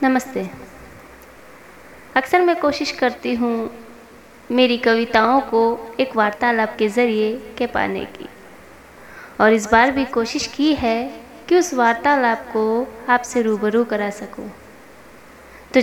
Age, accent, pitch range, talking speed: 20-39, native, 225-265 Hz, 125 wpm